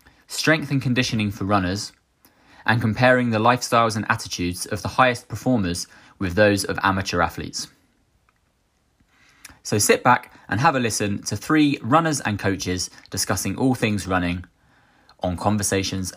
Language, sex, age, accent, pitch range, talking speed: English, male, 20-39, British, 90-120 Hz, 140 wpm